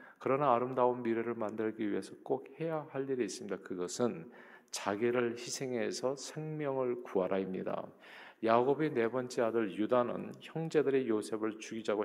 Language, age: Korean, 40-59